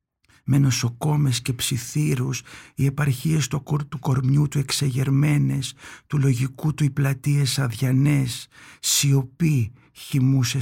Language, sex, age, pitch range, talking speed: Greek, male, 60-79, 125-145 Hz, 115 wpm